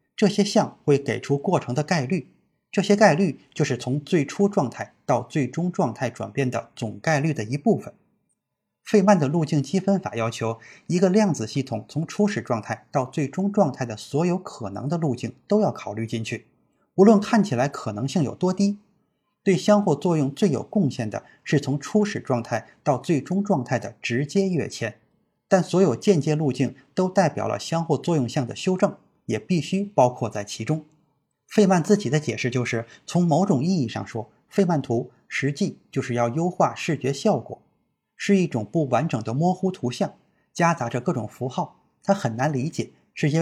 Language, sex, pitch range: Chinese, male, 120-185 Hz